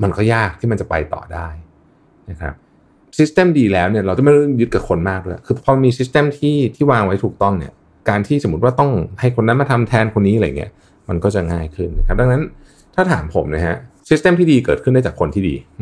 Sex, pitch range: male, 85-115 Hz